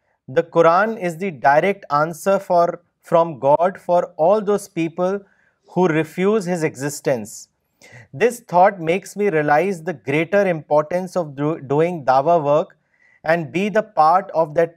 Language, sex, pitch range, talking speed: Urdu, male, 150-195 Hz, 140 wpm